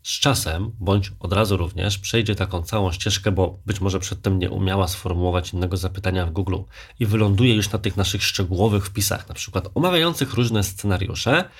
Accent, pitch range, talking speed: native, 95-110 Hz, 175 wpm